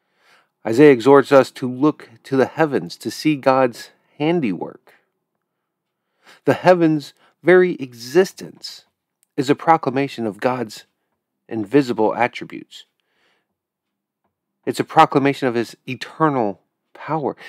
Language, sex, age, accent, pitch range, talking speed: English, male, 40-59, American, 120-160 Hz, 105 wpm